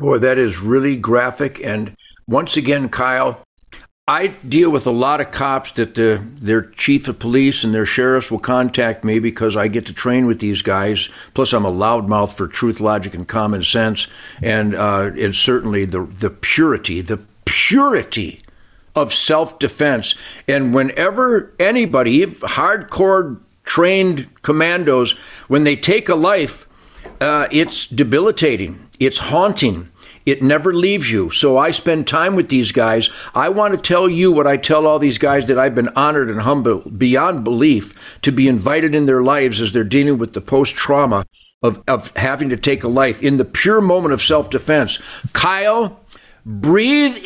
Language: English